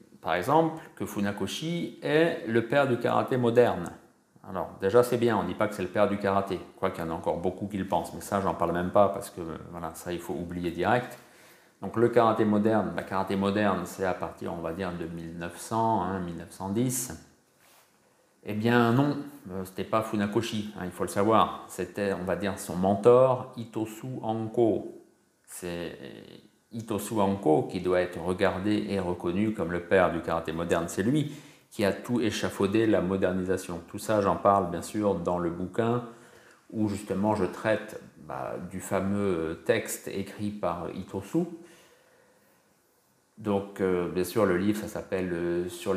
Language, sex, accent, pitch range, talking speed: French, male, French, 90-115 Hz, 185 wpm